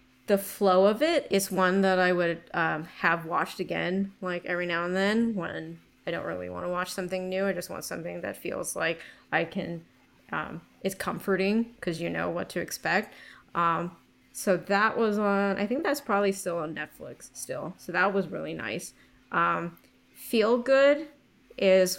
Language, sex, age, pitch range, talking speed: English, female, 20-39, 170-200 Hz, 185 wpm